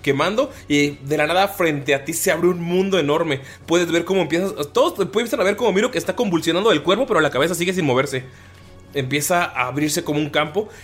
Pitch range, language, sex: 125-160 Hz, Spanish, male